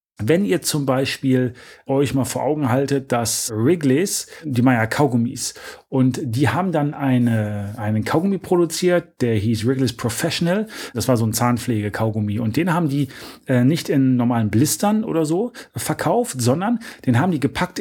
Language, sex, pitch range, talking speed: German, male, 120-150 Hz, 160 wpm